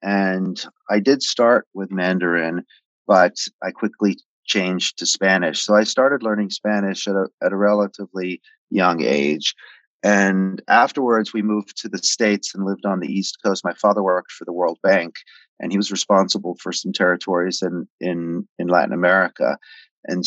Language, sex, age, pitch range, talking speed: English, male, 30-49, 90-100 Hz, 165 wpm